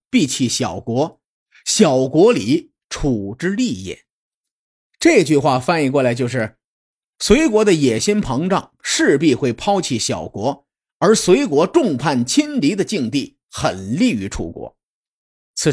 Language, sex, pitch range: Chinese, male, 145-230 Hz